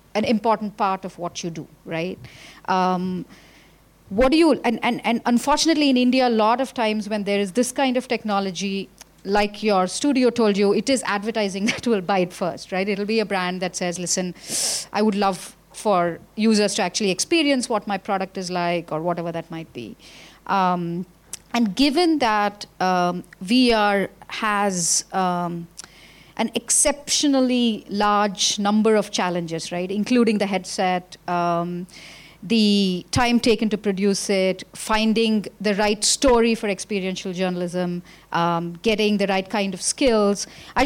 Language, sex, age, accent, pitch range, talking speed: English, female, 40-59, Indian, 185-235 Hz, 160 wpm